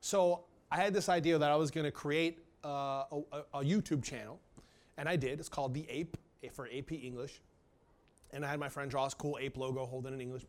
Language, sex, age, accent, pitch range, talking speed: English, male, 30-49, American, 130-155 Hz, 215 wpm